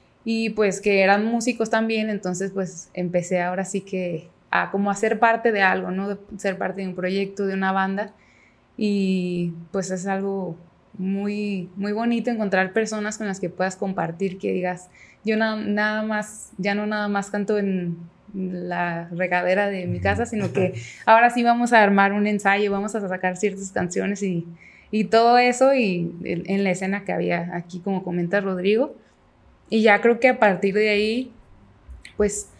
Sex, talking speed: female, 180 wpm